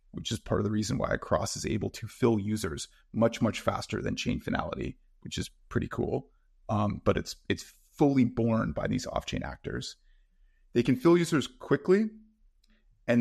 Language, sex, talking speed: English, male, 175 wpm